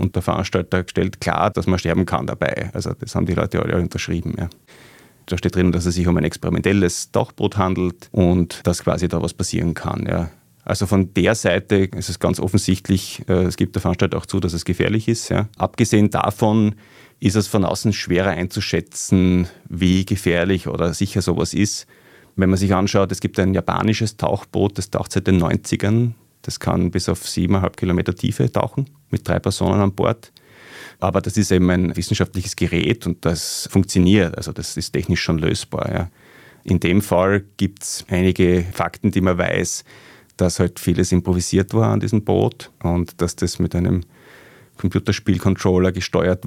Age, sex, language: 30-49, male, German